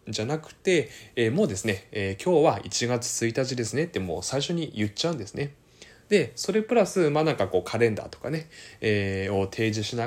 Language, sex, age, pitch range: Japanese, male, 20-39, 95-140 Hz